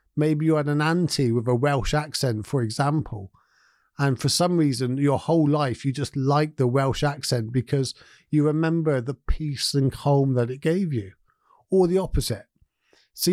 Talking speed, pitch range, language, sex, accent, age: 175 wpm, 130-165 Hz, English, male, British, 50-69